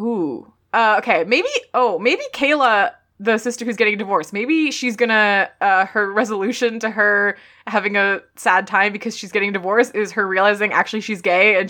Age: 20-39